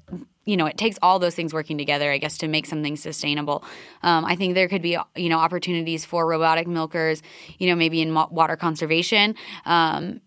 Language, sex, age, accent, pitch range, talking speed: English, female, 20-39, American, 165-195 Hz, 200 wpm